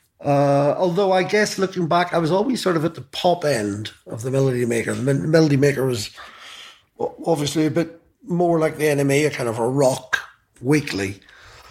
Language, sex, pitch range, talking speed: English, male, 135-170 Hz, 185 wpm